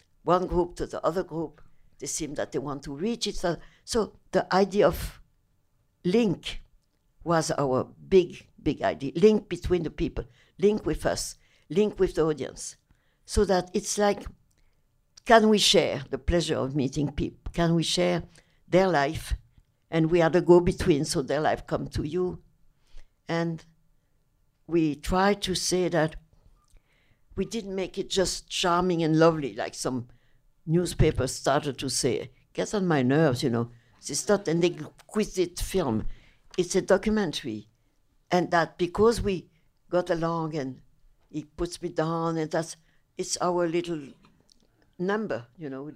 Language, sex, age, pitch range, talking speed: English, female, 60-79, 145-185 Hz, 155 wpm